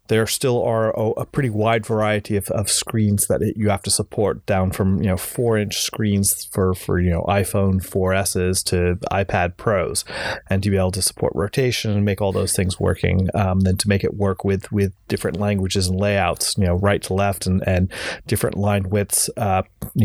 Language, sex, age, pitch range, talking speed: English, male, 30-49, 95-110 Hz, 205 wpm